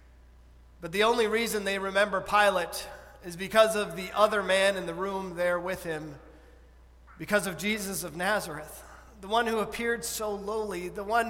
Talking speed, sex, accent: 170 wpm, male, American